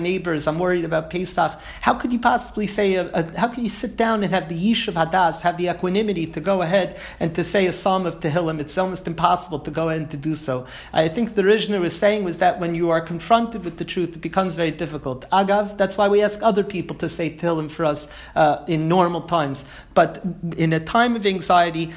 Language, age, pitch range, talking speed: English, 40-59, 160-195 Hz, 240 wpm